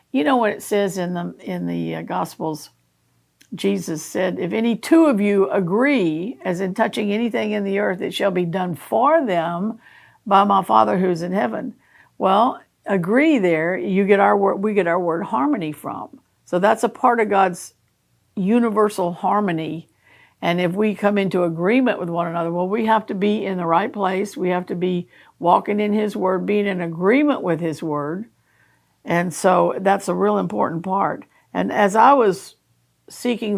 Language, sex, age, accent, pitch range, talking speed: English, female, 60-79, American, 170-205 Hz, 185 wpm